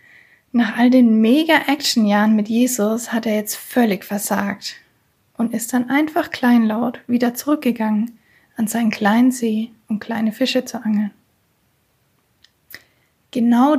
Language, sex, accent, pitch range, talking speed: German, female, German, 215-250 Hz, 120 wpm